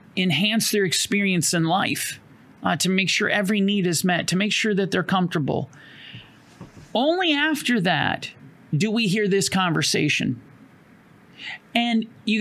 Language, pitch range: English, 170-230 Hz